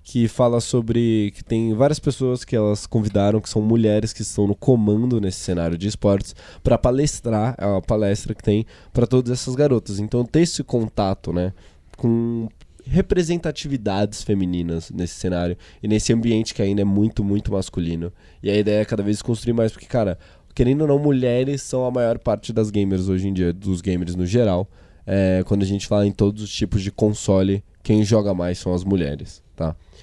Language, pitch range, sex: Portuguese, 95-125 Hz, male